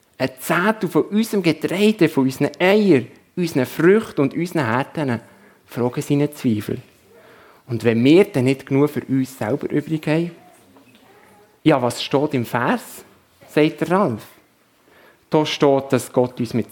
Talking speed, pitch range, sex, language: 145 wpm, 130-180 Hz, male, German